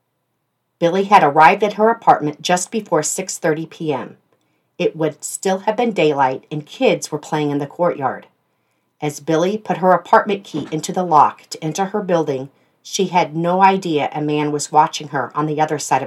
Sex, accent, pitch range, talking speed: female, American, 145-175 Hz, 185 wpm